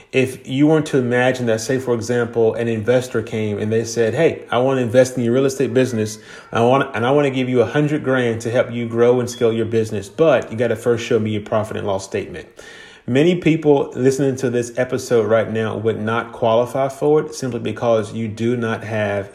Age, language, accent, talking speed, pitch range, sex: 30-49, English, American, 235 wpm, 110-130 Hz, male